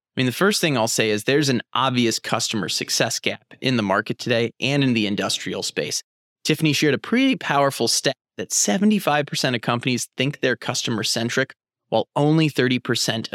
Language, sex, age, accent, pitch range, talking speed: English, male, 30-49, American, 115-150 Hz, 180 wpm